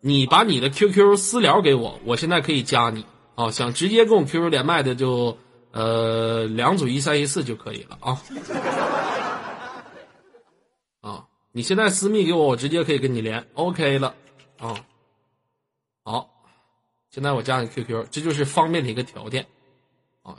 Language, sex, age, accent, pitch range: Chinese, male, 20-39, native, 120-175 Hz